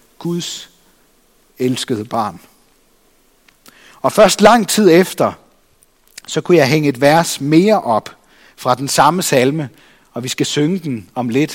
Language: Danish